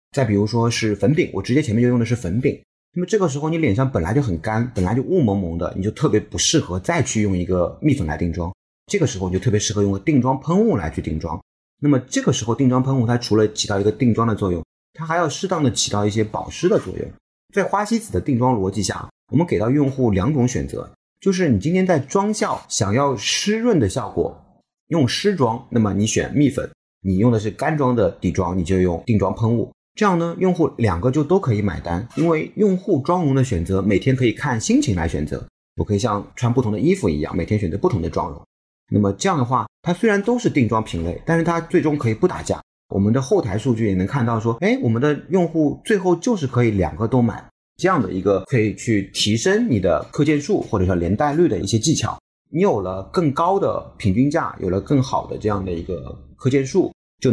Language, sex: Chinese, male